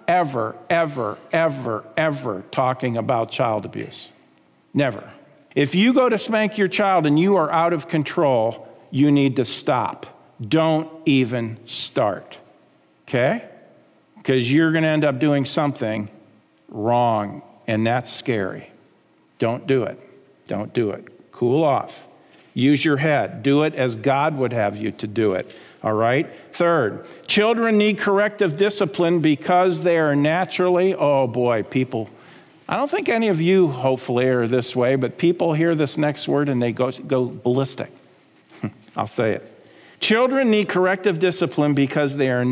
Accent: American